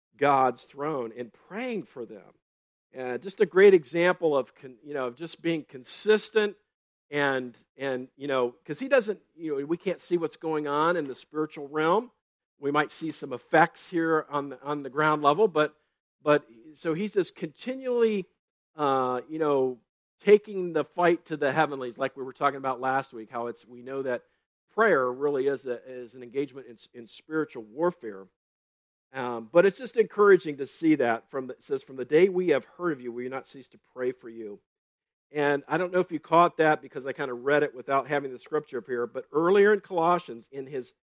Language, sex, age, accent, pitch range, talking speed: English, male, 50-69, American, 130-175 Hz, 205 wpm